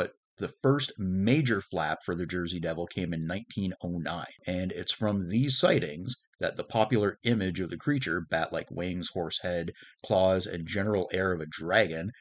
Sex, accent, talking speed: male, American, 165 wpm